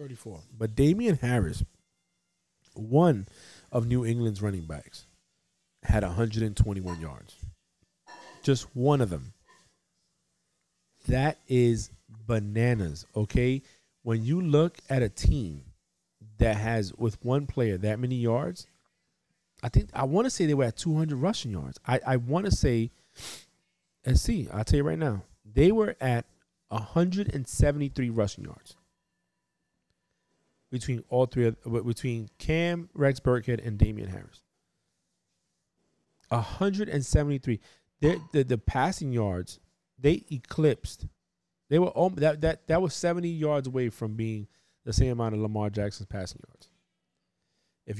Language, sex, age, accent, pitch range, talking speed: English, male, 40-59, American, 100-140 Hz, 135 wpm